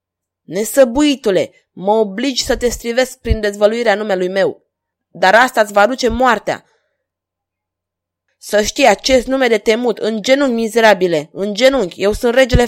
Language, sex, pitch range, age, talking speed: Romanian, female, 170-250 Hz, 20-39, 140 wpm